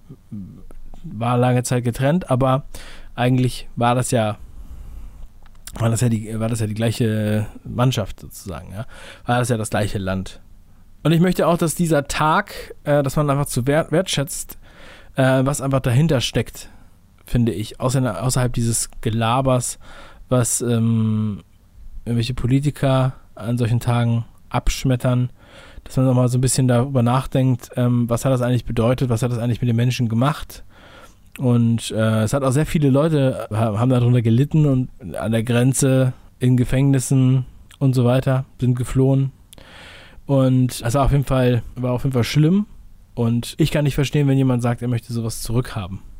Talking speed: 165 wpm